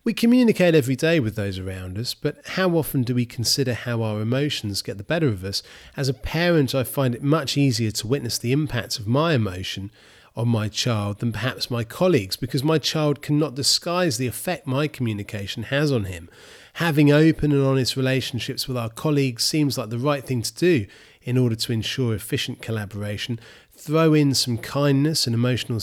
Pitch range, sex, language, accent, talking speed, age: 110-150 Hz, male, English, British, 195 wpm, 30-49